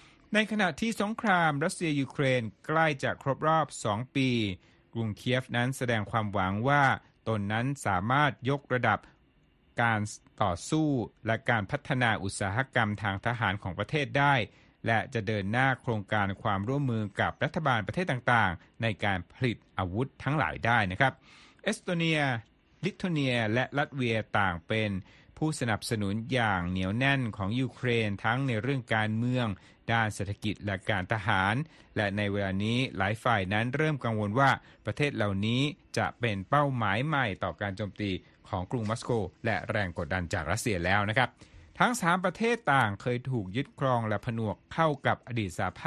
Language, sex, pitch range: Thai, male, 105-135 Hz